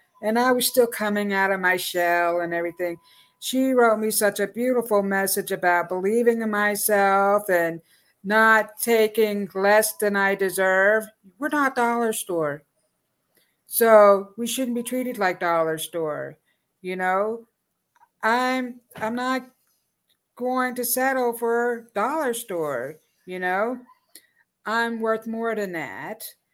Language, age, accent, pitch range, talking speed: English, 50-69, American, 195-235 Hz, 135 wpm